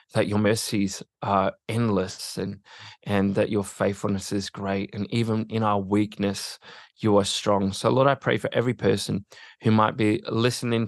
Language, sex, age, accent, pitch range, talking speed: English, male, 20-39, Australian, 100-115 Hz, 170 wpm